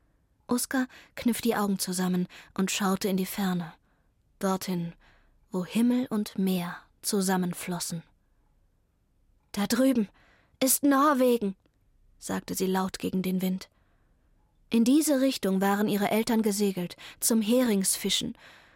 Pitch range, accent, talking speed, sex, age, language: 185-240 Hz, German, 110 wpm, female, 20-39, German